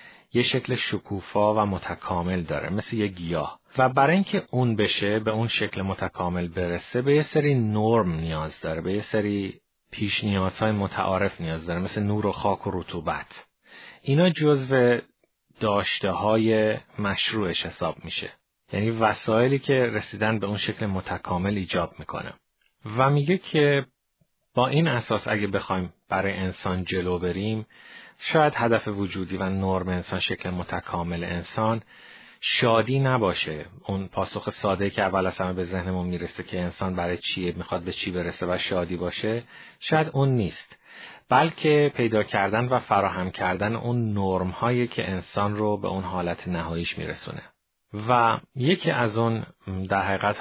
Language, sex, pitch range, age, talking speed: Persian, male, 90-115 Hz, 30-49, 150 wpm